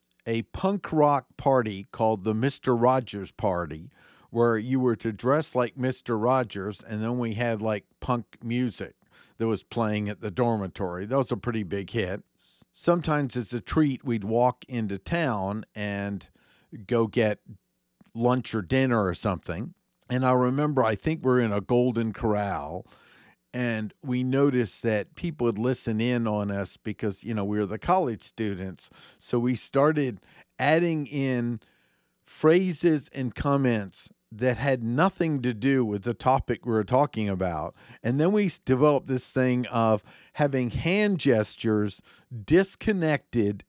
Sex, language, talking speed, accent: male, English, 150 wpm, American